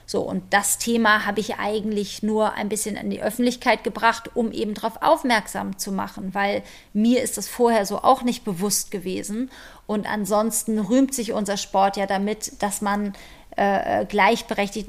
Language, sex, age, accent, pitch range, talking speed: German, female, 30-49, German, 205-240 Hz, 170 wpm